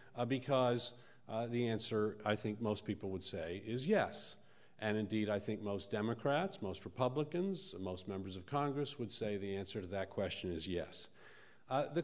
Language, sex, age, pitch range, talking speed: English, male, 50-69, 110-155 Hz, 180 wpm